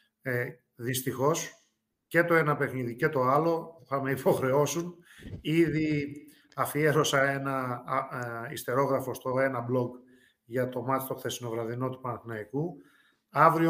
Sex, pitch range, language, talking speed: male, 120-145 Hz, Greek, 125 wpm